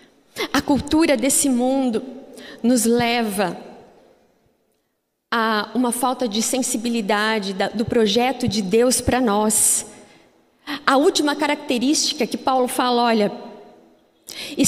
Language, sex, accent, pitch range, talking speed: Portuguese, female, Brazilian, 225-305 Hz, 100 wpm